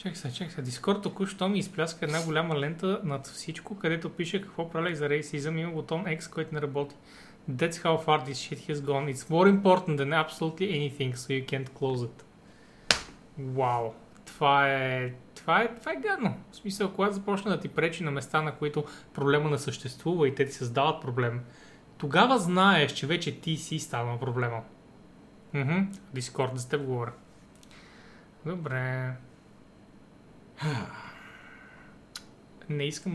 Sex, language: male, Bulgarian